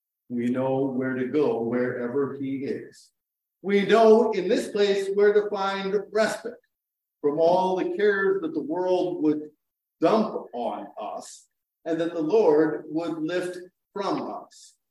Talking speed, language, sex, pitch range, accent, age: 145 wpm, English, male, 135-215 Hz, American, 50-69